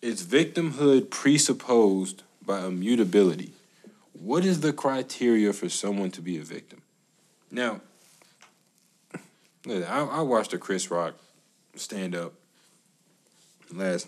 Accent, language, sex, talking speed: American, English, male, 105 wpm